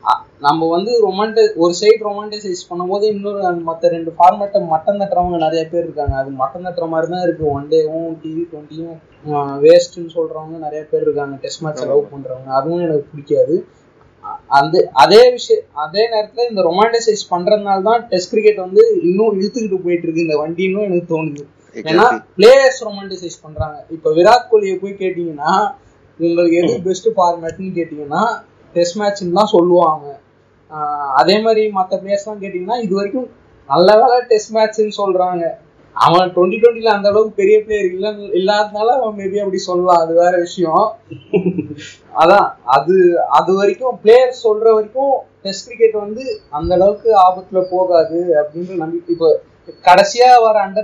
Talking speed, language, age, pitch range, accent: 125 wpm, Tamil, 20-39, 165-215 Hz, native